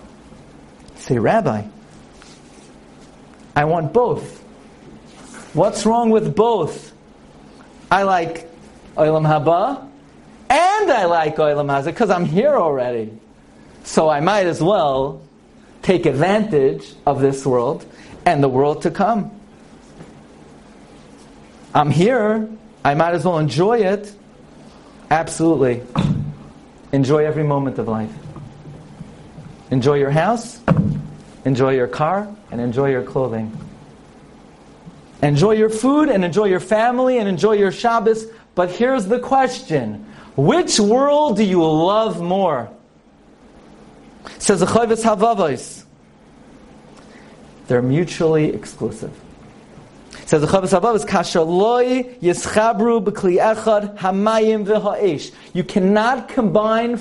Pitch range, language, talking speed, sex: 155-225 Hz, English, 100 wpm, male